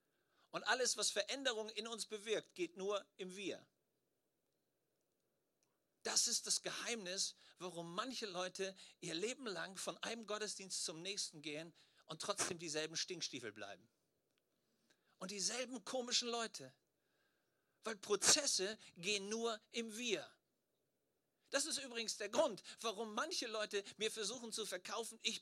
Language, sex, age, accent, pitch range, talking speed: German, male, 50-69, German, 150-215 Hz, 130 wpm